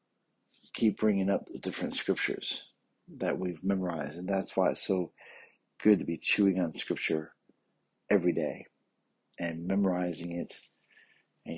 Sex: male